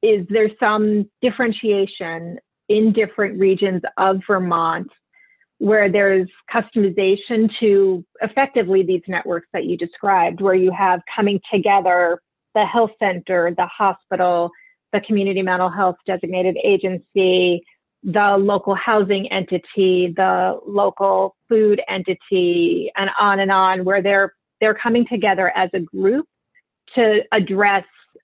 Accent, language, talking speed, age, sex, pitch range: American, English, 120 wpm, 30-49, female, 185-215 Hz